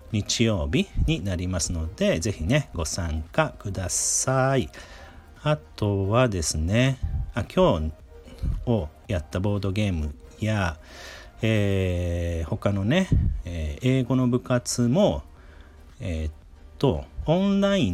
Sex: male